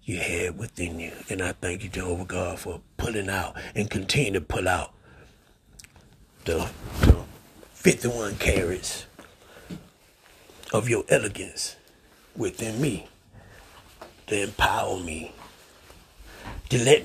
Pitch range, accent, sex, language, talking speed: 85-120 Hz, American, male, English, 115 wpm